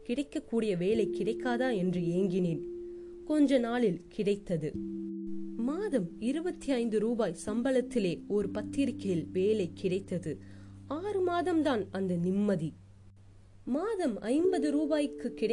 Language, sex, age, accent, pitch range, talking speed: Tamil, female, 20-39, native, 170-255 Hz, 55 wpm